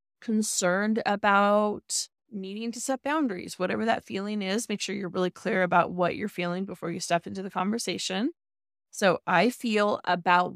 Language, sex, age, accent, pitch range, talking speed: English, female, 20-39, American, 180-210 Hz, 165 wpm